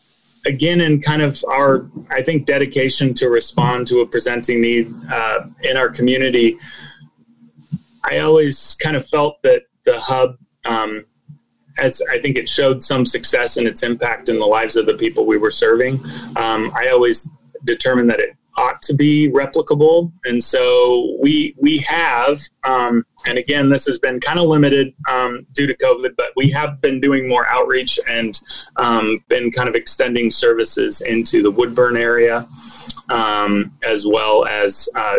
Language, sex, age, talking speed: English, male, 30-49, 165 wpm